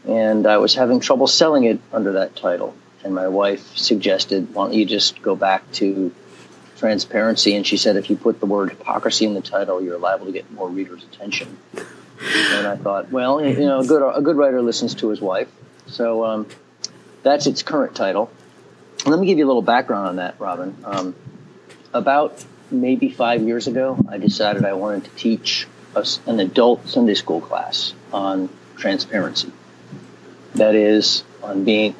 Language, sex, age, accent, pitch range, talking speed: English, male, 40-59, American, 95-115 Hz, 175 wpm